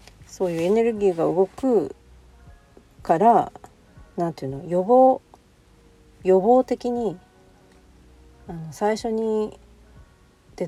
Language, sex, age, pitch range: Japanese, female, 50-69, 160-220 Hz